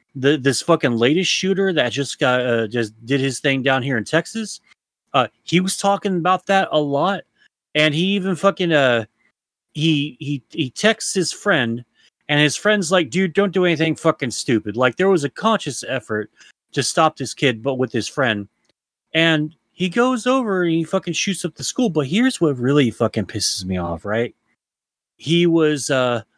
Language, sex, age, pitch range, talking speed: English, male, 30-49, 125-175 Hz, 190 wpm